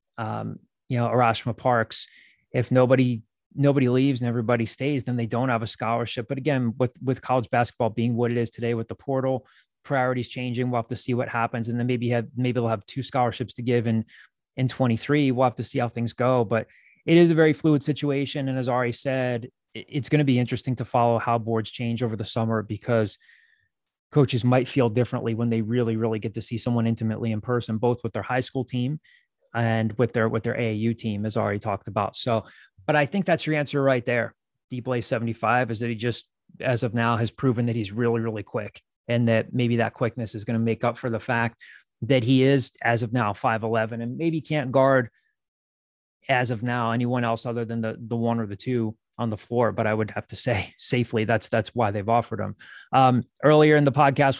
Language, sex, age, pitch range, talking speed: English, male, 20-39, 115-130 Hz, 225 wpm